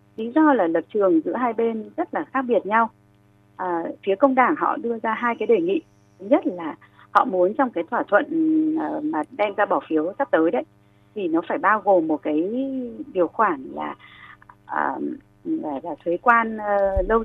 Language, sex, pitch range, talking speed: Vietnamese, female, 180-280 Hz, 195 wpm